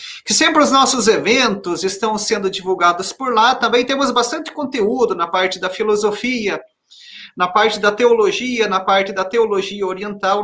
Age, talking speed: 40-59, 155 wpm